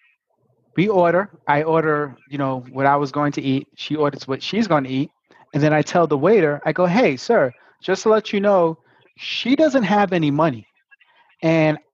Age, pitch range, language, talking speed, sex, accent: 30-49, 150-195 Hz, English, 195 wpm, male, American